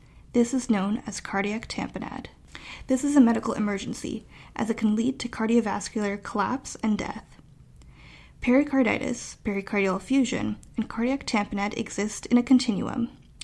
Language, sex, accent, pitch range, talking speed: English, female, American, 195-240 Hz, 135 wpm